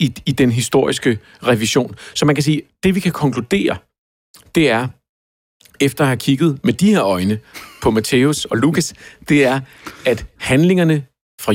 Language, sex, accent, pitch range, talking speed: Danish, male, native, 110-145 Hz, 165 wpm